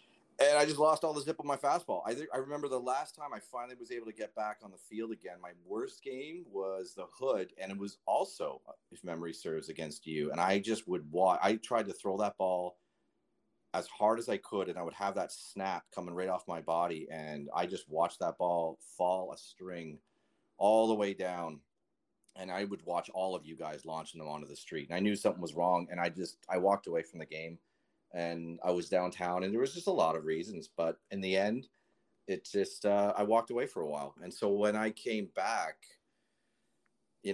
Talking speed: 230 wpm